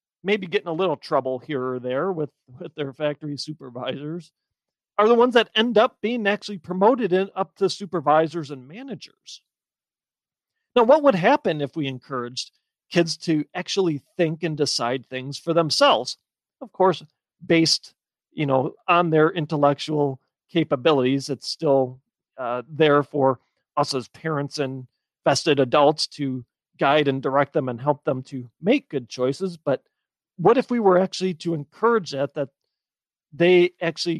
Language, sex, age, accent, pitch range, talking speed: English, male, 40-59, American, 135-200 Hz, 155 wpm